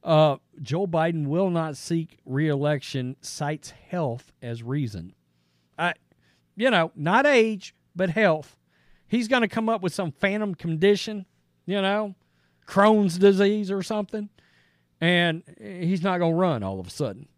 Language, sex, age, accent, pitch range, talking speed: English, male, 40-59, American, 145-215 Hz, 150 wpm